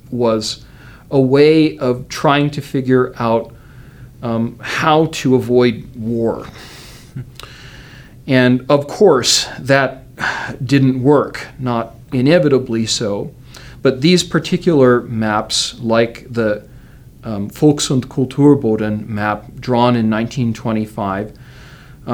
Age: 40-59